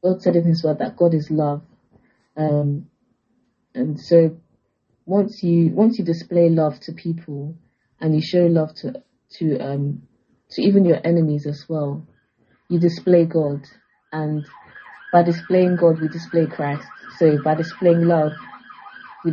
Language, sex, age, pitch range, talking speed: English, female, 20-39, 150-170 Hz, 150 wpm